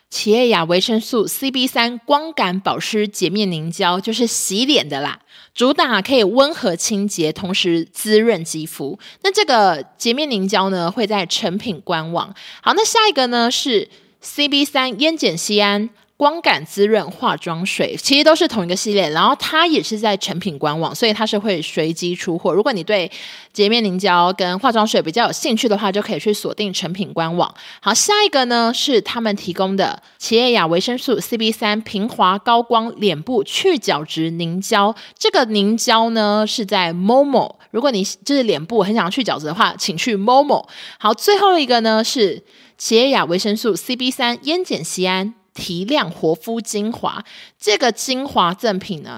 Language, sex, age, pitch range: Chinese, female, 20-39, 185-235 Hz